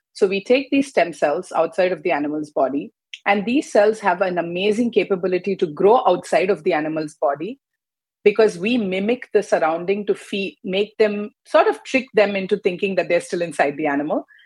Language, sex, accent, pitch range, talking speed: English, female, Indian, 165-210 Hz, 190 wpm